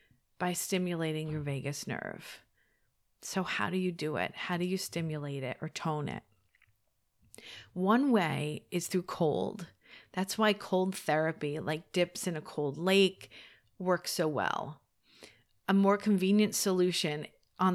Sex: female